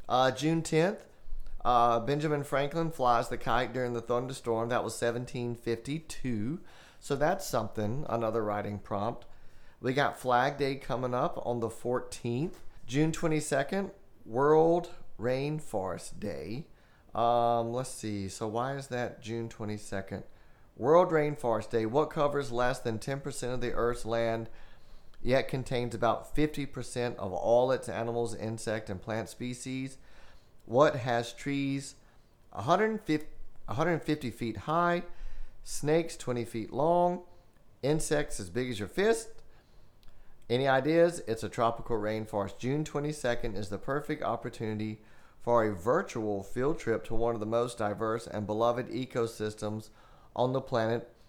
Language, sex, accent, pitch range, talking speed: English, male, American, 115-145 Hz, 135 wpm